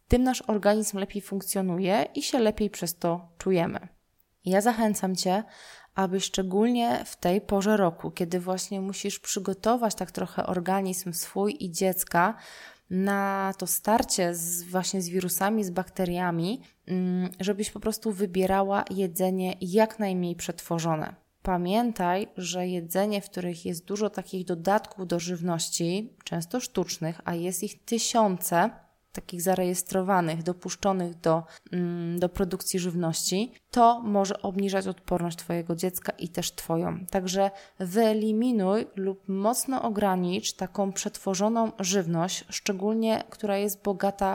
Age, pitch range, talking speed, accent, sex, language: 20-39, 180-210 Hz, 125 wpm, native, female, Polish